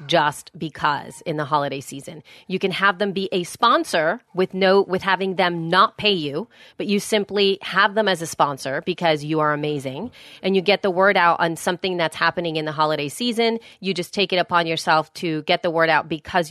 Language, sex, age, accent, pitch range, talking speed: English, female, 30-49, American, 155-200 Hz, 215 wpm